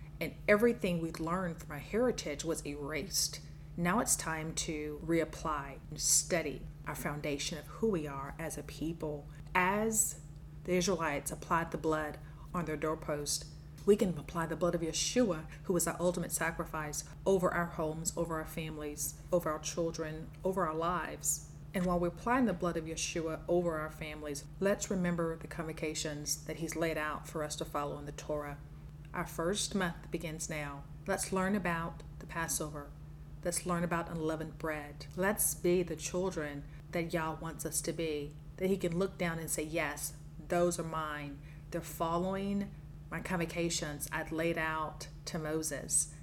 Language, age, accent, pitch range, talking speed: English, 40-59, American, 150-175 Hz, 170 wpm